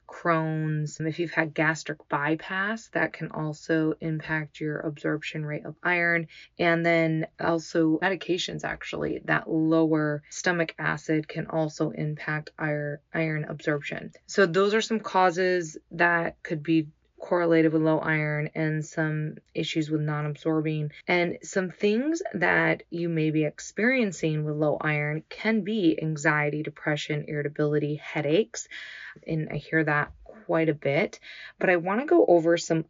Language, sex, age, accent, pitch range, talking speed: English, female, 20-39, American, 150-170 Hz, 140 wpm